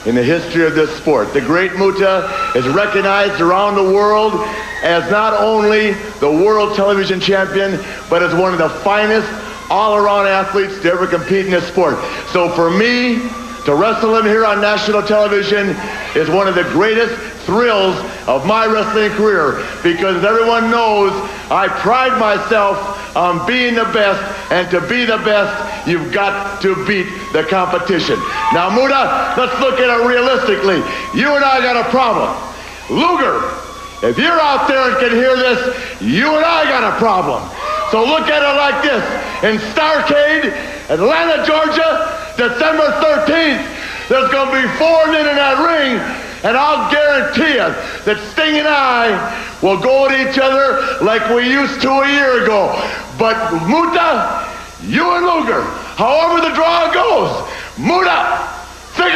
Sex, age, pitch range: male, 60-79, 195-275 Hz